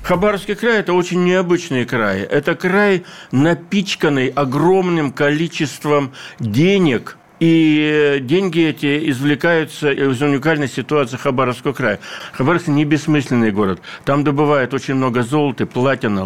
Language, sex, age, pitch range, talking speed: Russian, male, 60-79, 115-150 Hz, 115 wpm